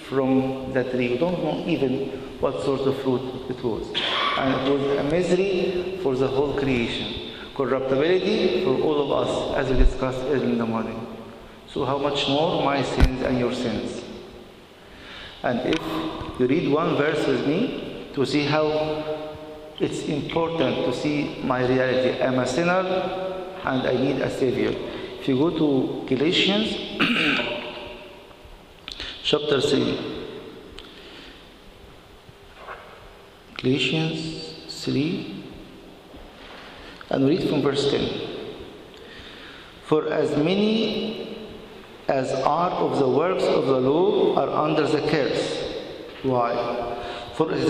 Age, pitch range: 50-69, 125-185 Hz